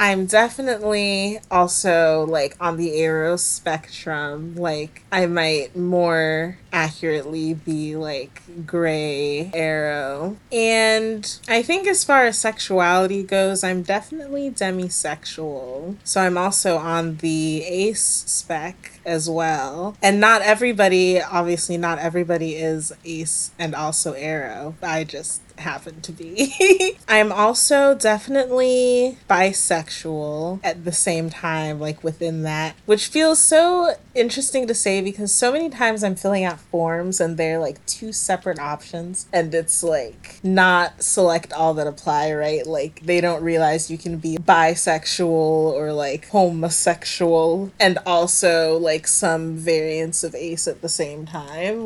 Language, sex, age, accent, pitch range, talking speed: English, female, 20-39, American, 160-200 Hz, 135 wpm